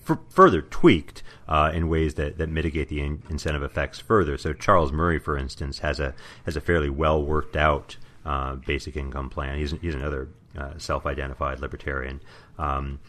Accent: American